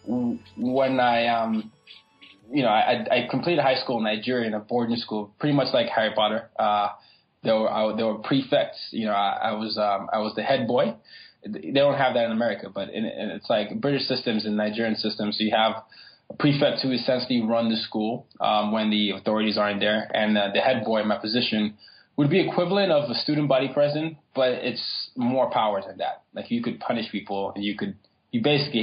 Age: 20-39